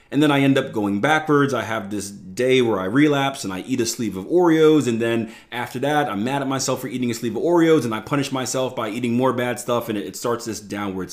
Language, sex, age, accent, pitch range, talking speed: English, male, 30-49, American, 100-130 Hz, 265 wpm